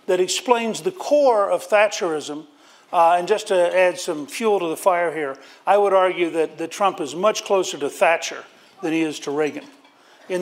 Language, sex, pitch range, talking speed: English, male, 160-210 Hz, 195 wpm